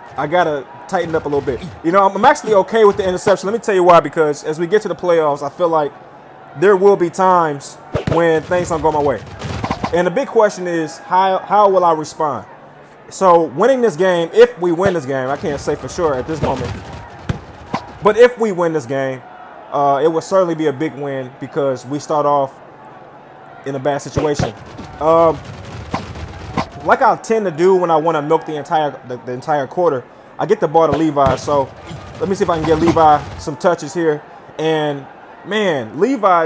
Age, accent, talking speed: 20-39, American, 210 wpm